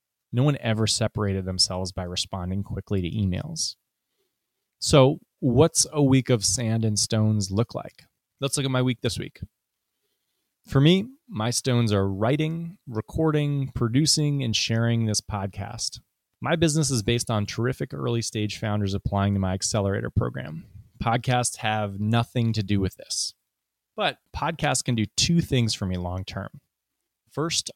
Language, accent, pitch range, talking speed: English, American, 100-130 Hz, 155 wpm